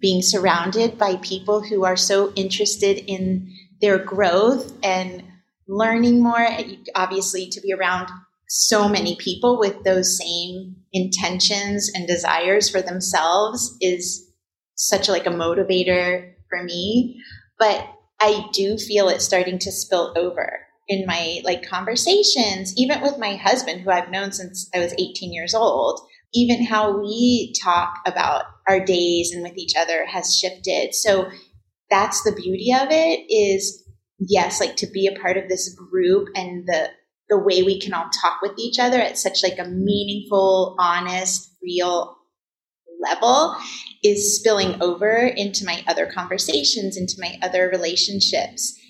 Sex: female